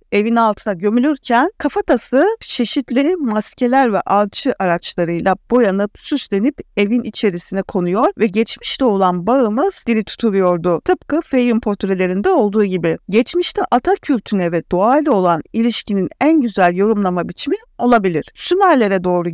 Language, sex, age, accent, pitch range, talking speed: Turkish, female, 50-69, native, 185-255 Hz, 120 wpm